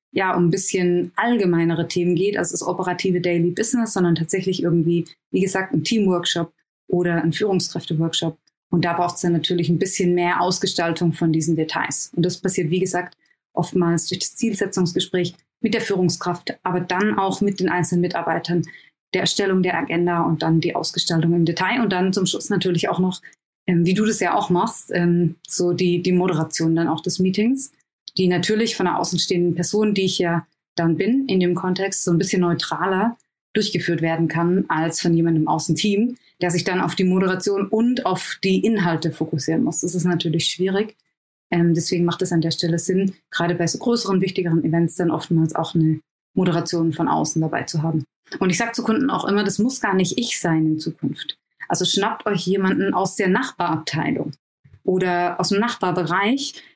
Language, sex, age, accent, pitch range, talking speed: German, female, 20-39, German, 170-190 Hz, 185 wpm